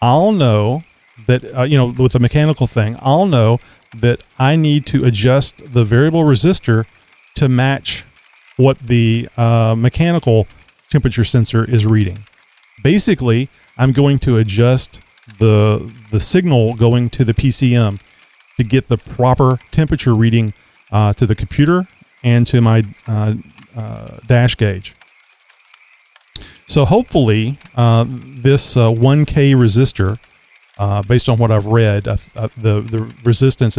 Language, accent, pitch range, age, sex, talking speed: English, American, 110-130 Hz, 40-59, male, 135 wpm